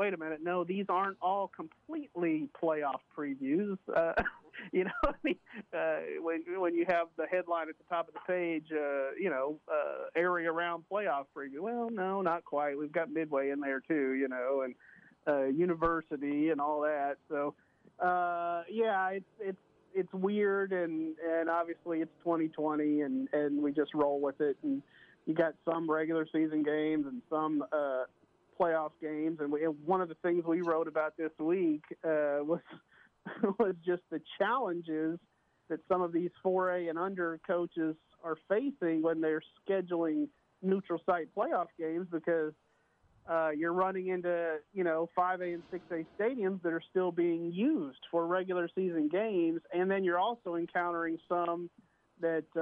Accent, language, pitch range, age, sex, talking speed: American, English, 155-185 Hz, 40-59, male, 170 wpm